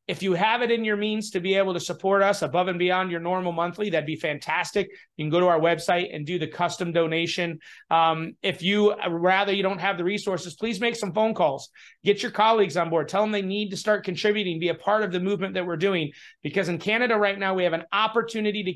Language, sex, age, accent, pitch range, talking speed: English, male, 30-49, American, 170-200 Hz, 250 wpm